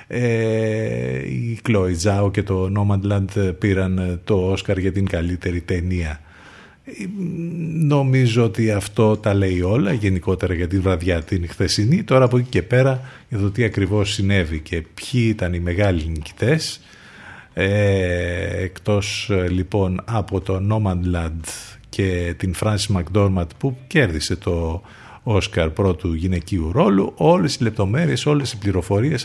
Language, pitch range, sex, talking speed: Greek, 90-110 Hz, male, 125 wpm